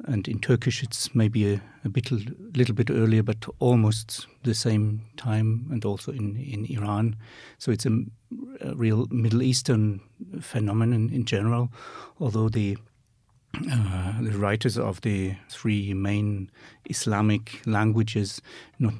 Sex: male